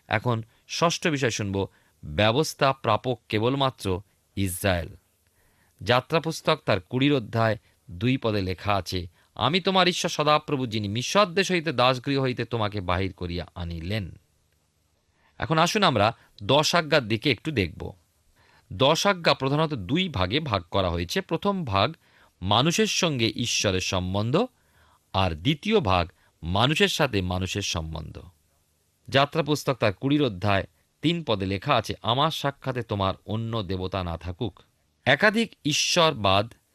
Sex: male